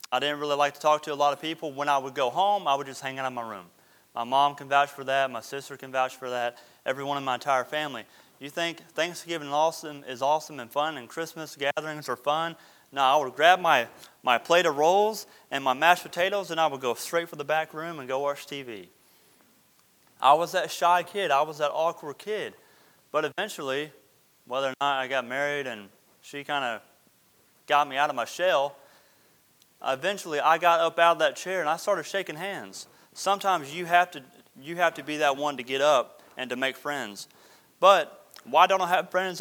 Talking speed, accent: 220 wpm, American